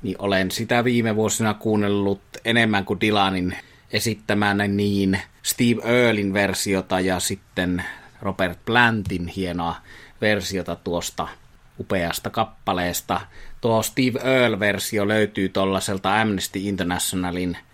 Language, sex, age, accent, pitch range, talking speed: Finnish, male, 30-49, native, 95-110 Hz, 105 wpm